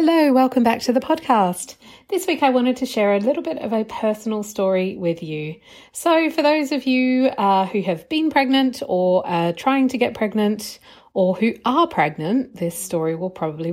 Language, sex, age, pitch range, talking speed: English, female, 40-59, 180-260 Hz, 195 wpm